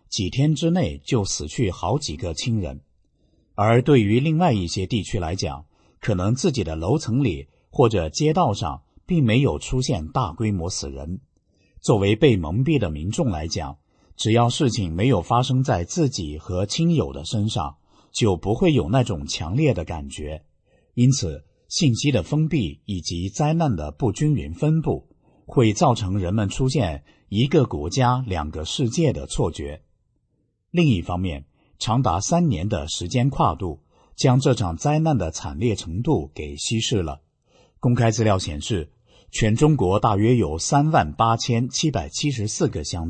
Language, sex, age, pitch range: Chinese, male, 50-69, 90-135 Hz